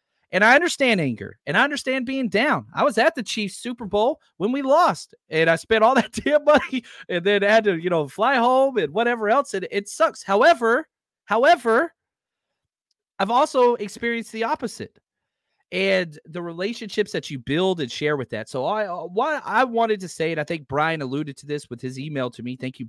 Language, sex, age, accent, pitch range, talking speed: English, male, 30-49, American, 145-235 Hz, 205 wpm